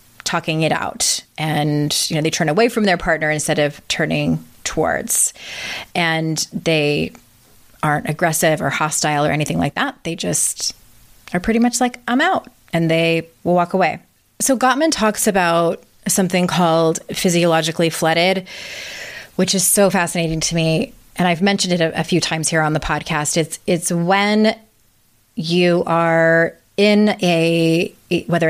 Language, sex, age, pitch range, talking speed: English, female, 30-49, 155-185 Hz, 150 wpm